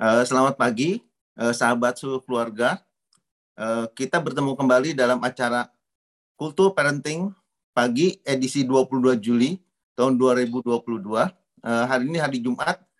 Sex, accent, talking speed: male, native, 120 wpm